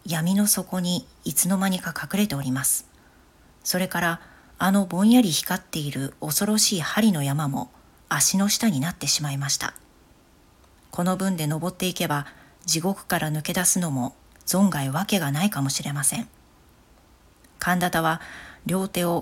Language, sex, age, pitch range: Japanese, female, 40-59, 150-195 Hz